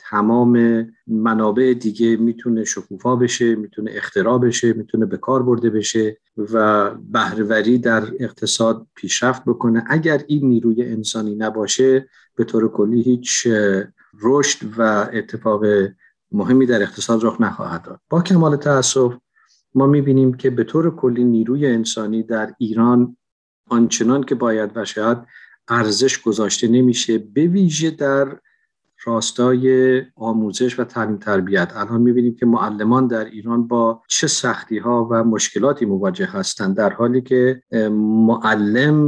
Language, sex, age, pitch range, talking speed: Persian, male, 50-69, 110-130 Hz, 130 wpm